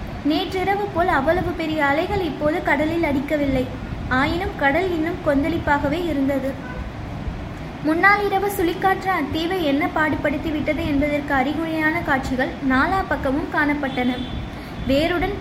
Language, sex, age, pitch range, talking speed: Tamil, female, 20-39, 285-345 Hz, 95 wpm